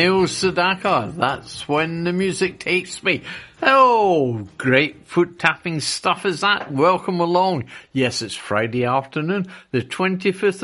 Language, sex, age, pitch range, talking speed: English, male, 60-79, 150-200 Hz, 125 wpm